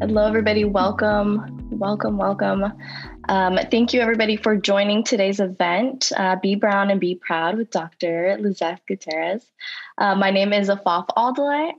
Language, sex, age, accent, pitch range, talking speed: English, female, 20-39, American, 170-205 Hz, 150 wpm